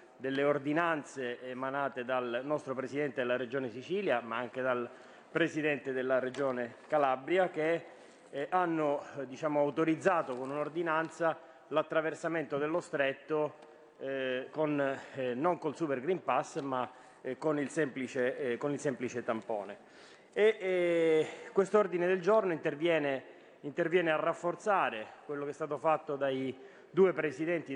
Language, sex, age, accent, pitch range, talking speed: Italian, male, 30-49, native, 140-170 Hz, 135 wpm